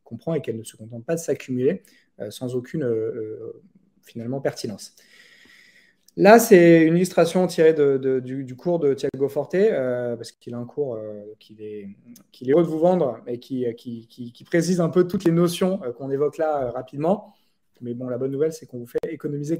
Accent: French